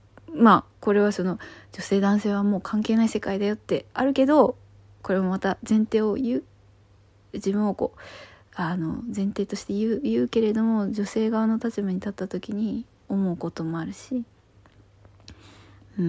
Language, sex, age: Japanese, female, 20-39